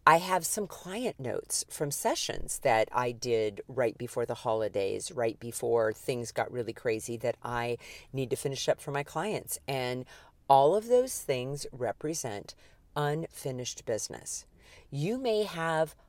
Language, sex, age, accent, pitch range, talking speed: English, female, 40-59, American, 125-205 Hz, 150 wpm